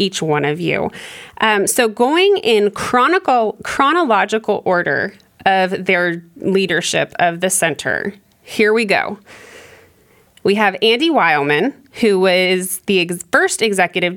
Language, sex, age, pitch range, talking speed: English, female, 20-39, 170-220 Hz, 125 wpm